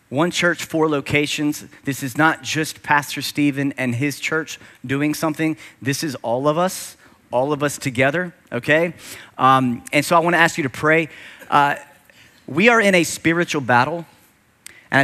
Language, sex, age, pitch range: English, male, 30-49, 120-160 Hz